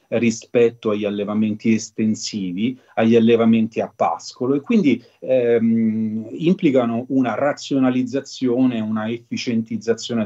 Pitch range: 110-165 Hz